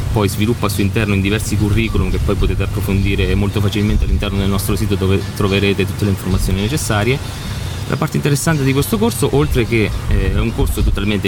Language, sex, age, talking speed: Italian, male, 30-49, 185 wpm